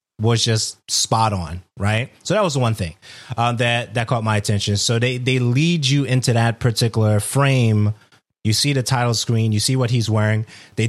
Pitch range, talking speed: 110-130 Hz, 205 wpm